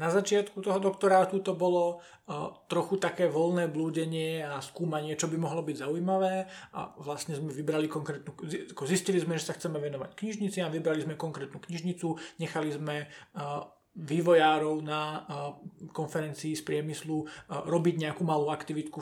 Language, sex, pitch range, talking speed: Czech, male, 150-180 Hz, 155 wpm